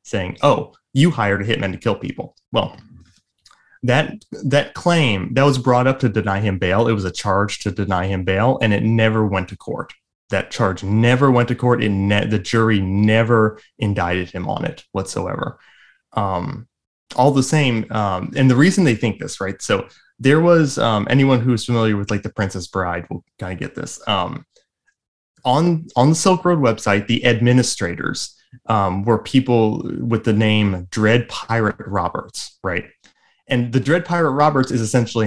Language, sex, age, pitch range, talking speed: English, male, 20-39, 100-125 Hz, 180 wpm